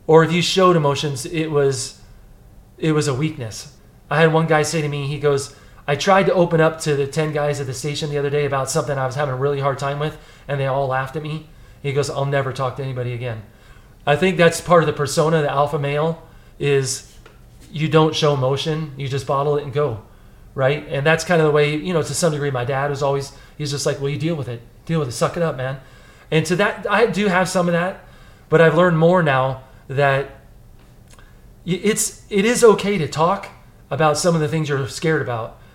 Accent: American